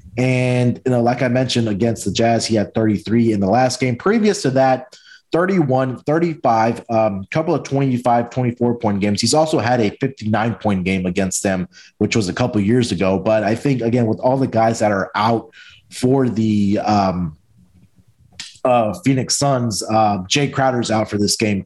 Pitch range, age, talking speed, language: 105-125 Hz, 30-49, 180 wpm, English